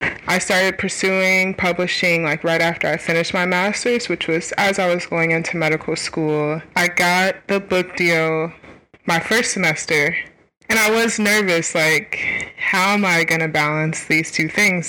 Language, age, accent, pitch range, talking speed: English, 20-39, American, 165-195 Hz, 170 wpm